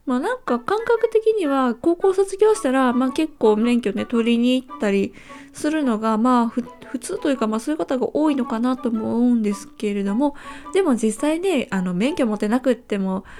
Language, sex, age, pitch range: Japanese, female, 20-39, 210-285 Hz